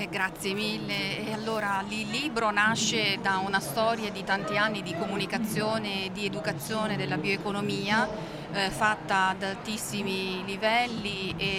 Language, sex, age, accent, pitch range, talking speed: Italian, female, 40-59, native, 195-220 Hz, 140 wpm